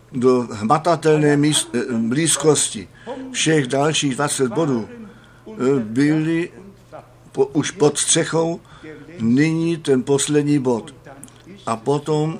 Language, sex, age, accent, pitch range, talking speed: Czech, male, 60-79, native, 125-150 Hz, 90 wpm